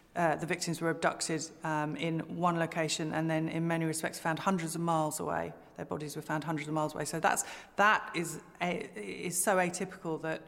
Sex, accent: female, British